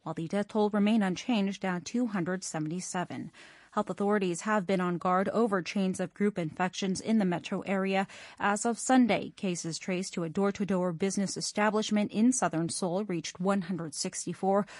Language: Korean